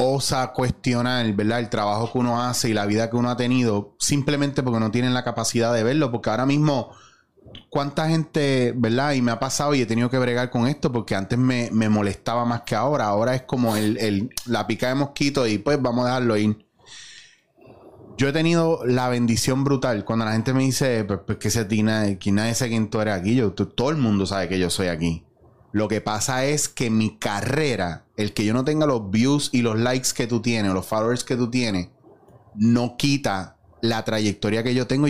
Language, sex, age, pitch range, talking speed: Spanish, male, 20-39, 110-130 Hz, 215 wpm